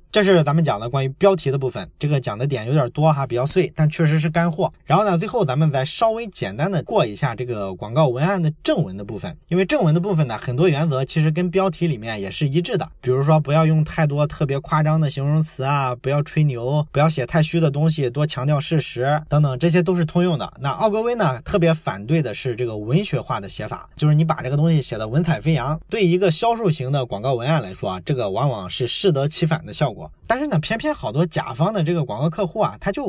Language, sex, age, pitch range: Chinese, male, 20-39, 140-175 Hz